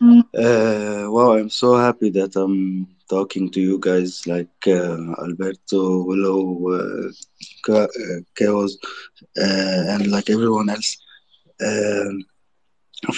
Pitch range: 95-115 Hz